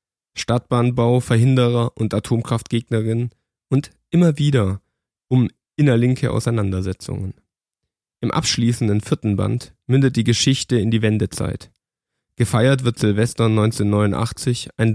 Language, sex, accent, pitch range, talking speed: German, male, German, 105-125 Hz, 100 wpm